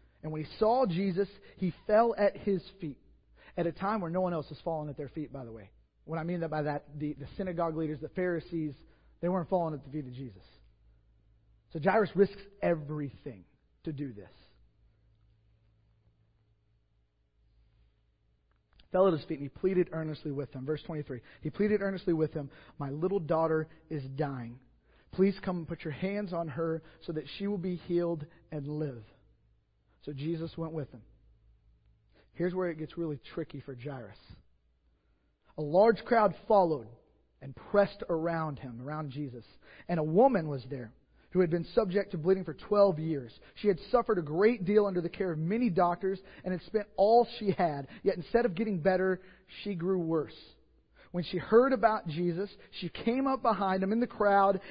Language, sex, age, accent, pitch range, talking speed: English, male, 40-59, American, 140-190 Hz, 180 wpm